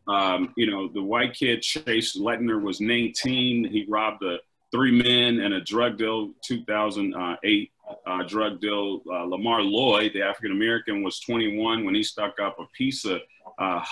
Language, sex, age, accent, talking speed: English, male, 40-59, American, 160 wpm